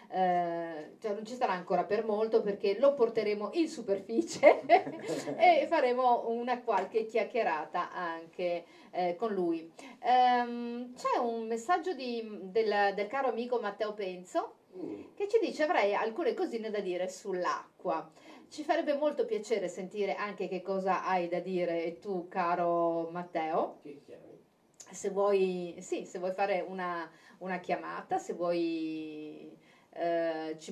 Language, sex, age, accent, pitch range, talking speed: Italian, female, 40-59, native, 180-240 Hz, 125 wpm